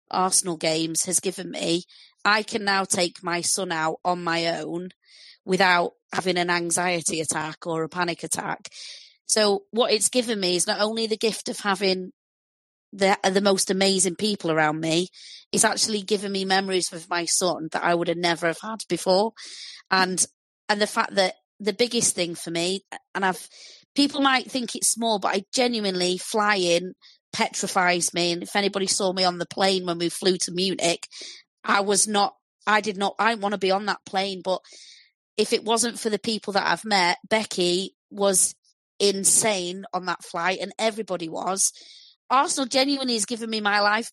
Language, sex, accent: English, female, British